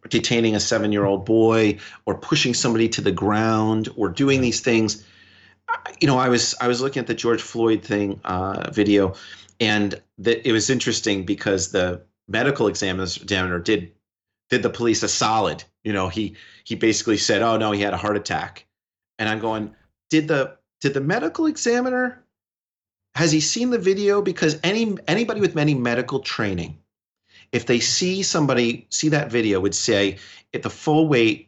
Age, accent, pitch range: 40-59, American, 100-125 Hz